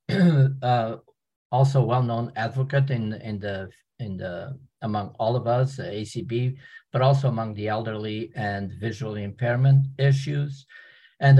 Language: English